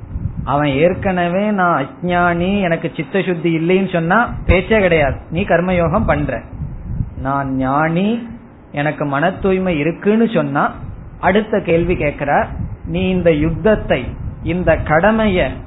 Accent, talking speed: native, 45 wpm